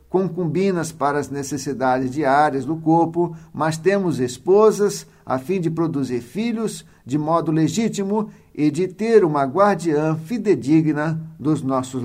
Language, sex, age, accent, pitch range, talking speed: Portuguese, male, 60-79, Brazilian, 150-195 Hz, 130 wpm